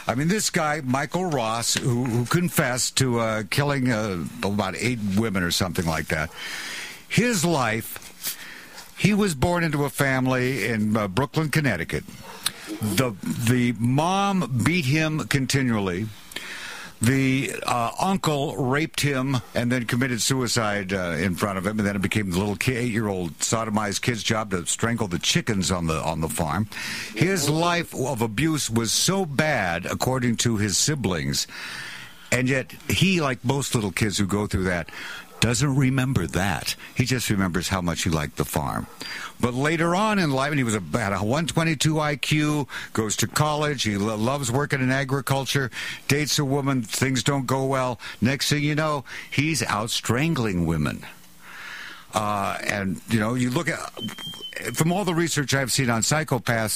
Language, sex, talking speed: English, male, 165 wpm